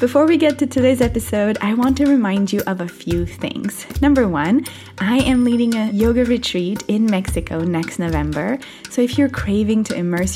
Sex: female